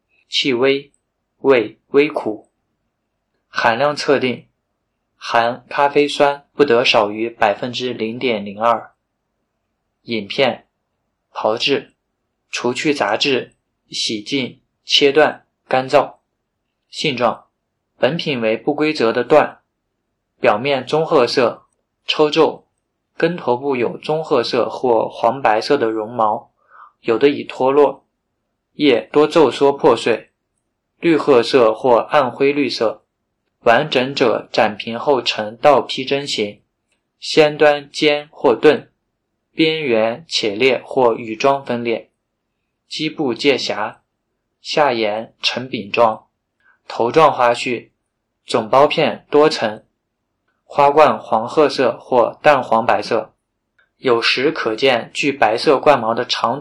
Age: 20-39